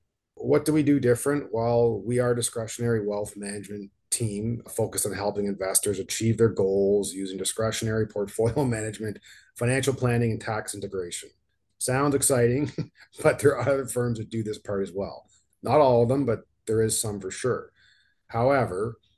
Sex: male